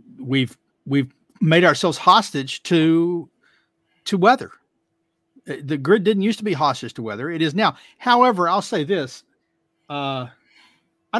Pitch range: 130-175 Hz